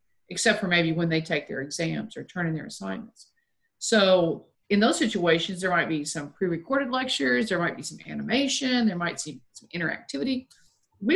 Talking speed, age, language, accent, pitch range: 185 wpm, 50-69, English, American, 170-225 Hz